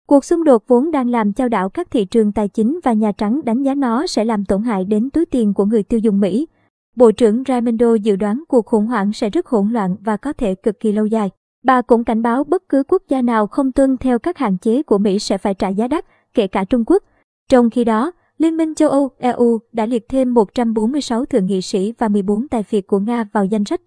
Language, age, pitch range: Vietnamese, 20-39, 215-265 Hz